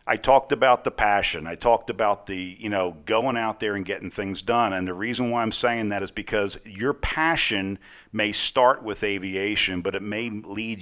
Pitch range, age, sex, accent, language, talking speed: 100-130 Hz, 50-69, male, American, English, 205 wpm